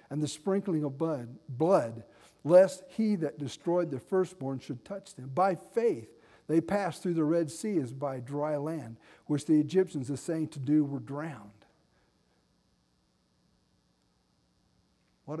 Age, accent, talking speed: 50-69, American, 145 wpm